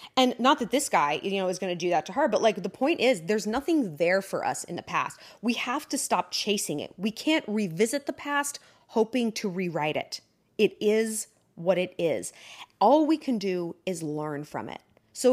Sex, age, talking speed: female, 30-49, 220 wpm